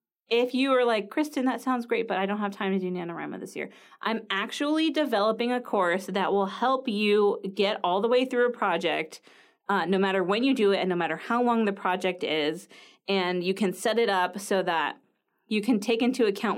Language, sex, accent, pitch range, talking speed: English, female, American, 180-240 Hz, 225 wpm